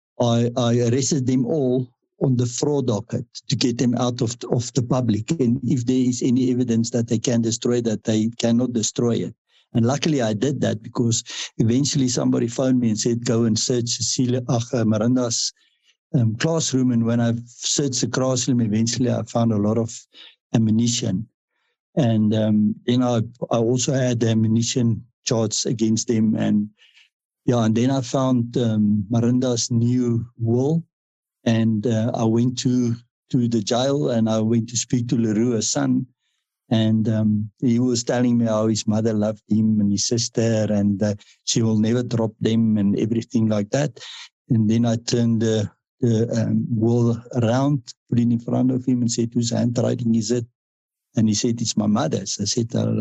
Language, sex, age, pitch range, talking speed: English, male, 60-79, 110-125 Hz, 175 wpm